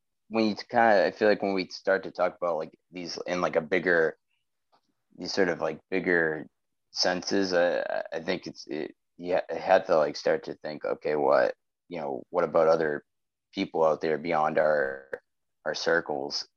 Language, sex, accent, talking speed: English, male, American, 180 wpm